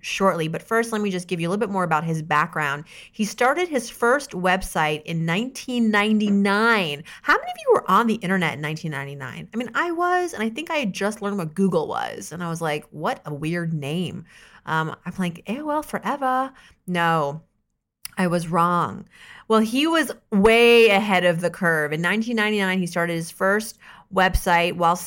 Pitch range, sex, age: 170-220 Hz, female, 30-49